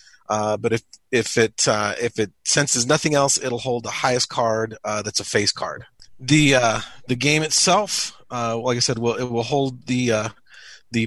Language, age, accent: English, 30-49, American